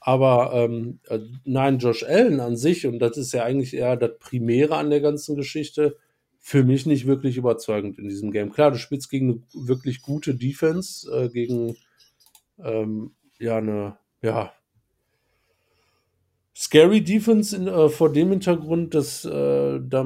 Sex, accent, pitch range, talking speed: male, German, 125-160 Hz, 155 wpm